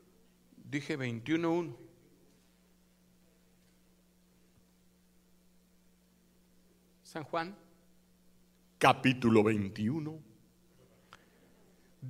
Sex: male